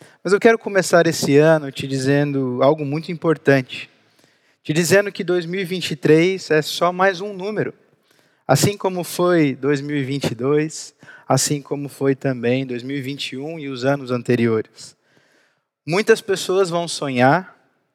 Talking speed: 125 wpm